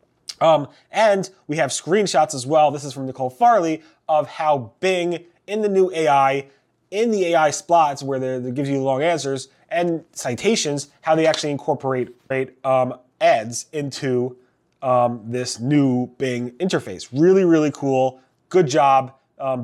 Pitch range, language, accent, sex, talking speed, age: 125-155 Hz, English, American, male, 155 wpm, 30-49